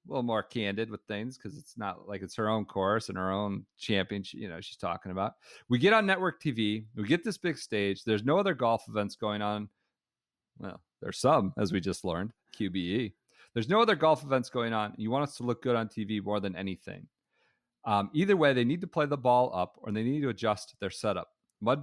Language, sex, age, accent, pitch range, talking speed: English, male, 40-59, American, 100-130 Hz, 230 wpm